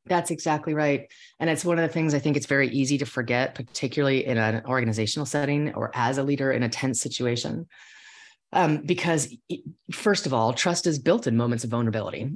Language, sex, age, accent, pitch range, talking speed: English, female, 30-49, American, 125-165 Hz, 200 wpm